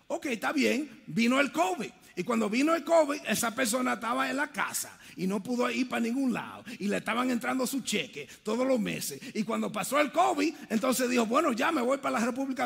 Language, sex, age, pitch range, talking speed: English, male, 30-49, 245-320 Hz, 225 wpm